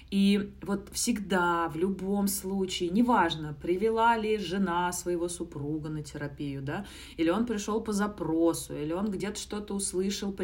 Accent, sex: native, female